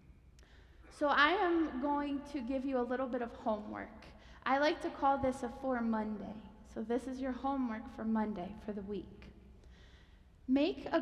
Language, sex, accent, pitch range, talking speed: English, female, American, 230-330 Hz, 175 wpm